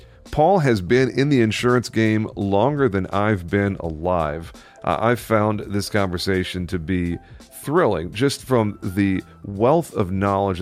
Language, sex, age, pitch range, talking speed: English, male, 40-59, 90-110 Hz, 145 wpm